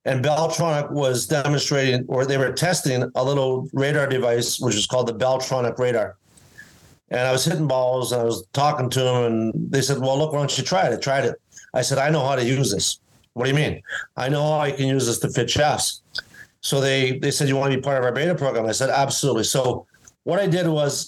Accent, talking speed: American, 240 wpm